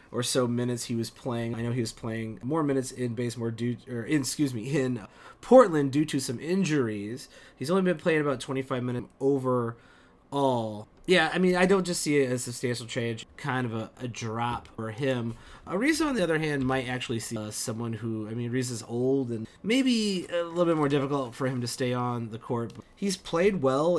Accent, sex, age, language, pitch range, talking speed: American, male, 30-49, English, 120-165 Hz, 220 wpm